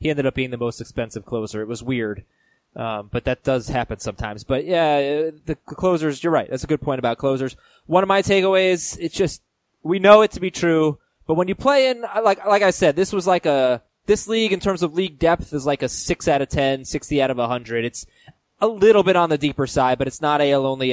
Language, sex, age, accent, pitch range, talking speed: English, male, 20-39, American, 125-170 Hz, 245 wpm